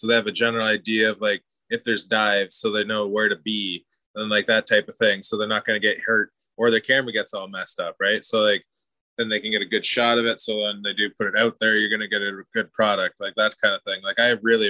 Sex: male